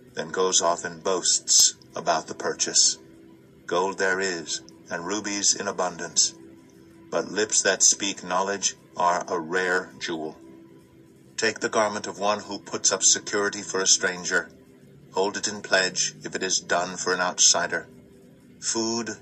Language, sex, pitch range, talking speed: English, male, 75-100 Hz, 150 wpm